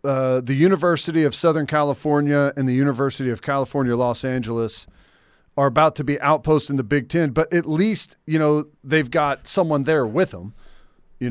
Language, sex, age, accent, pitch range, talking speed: English, male, 40-59, American, 135-165 Hz, 175 wpm